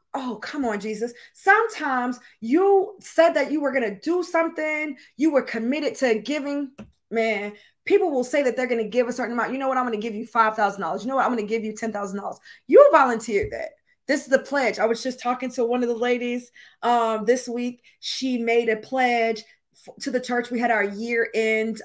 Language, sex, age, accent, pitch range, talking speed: English, female, 20-39, American, 215-265 Hz, 220 wpm